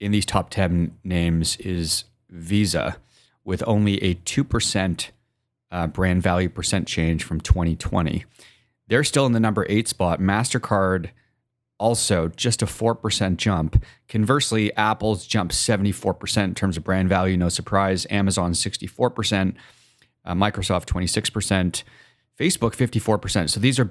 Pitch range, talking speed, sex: 90-110 Hz, 130 wpm, male